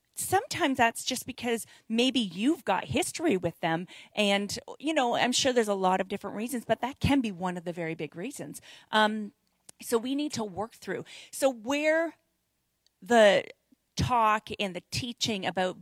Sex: female